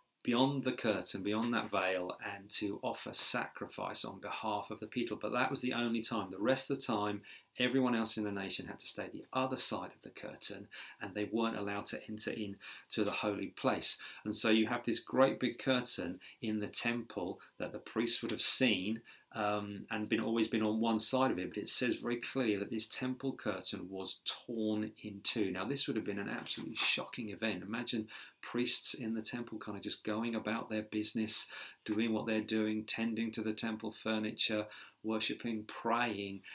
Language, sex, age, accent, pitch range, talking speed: English, male, 40-59, British, 105-120 Hz, 200 wpm